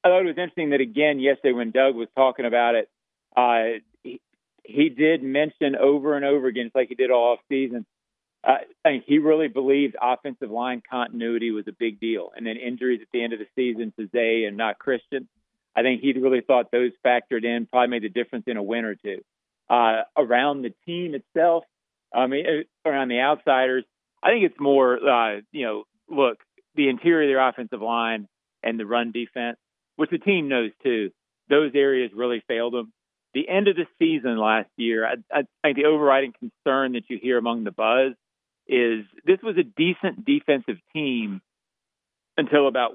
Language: English